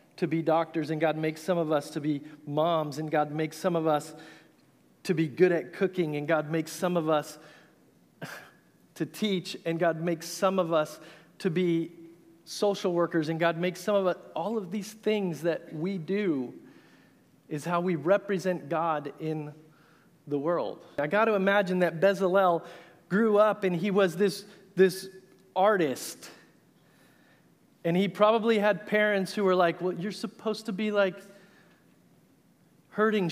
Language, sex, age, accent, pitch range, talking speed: English, male, 40-59, American, 170-205 Hz, 165 wpm